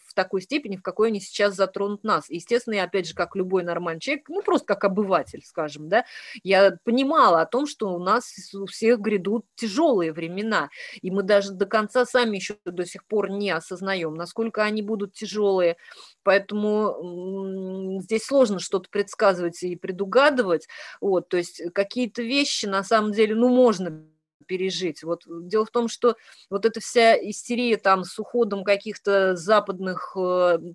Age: 30-49